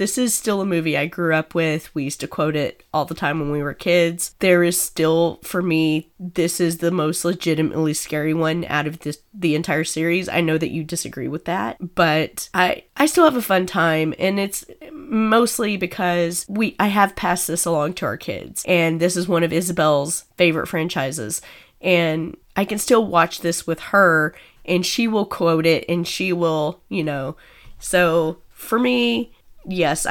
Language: English